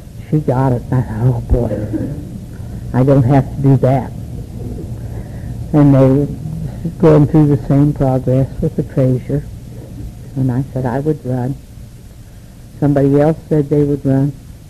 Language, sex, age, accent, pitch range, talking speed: English, female, 60-79, American, 120-155 Hz, 145 wpm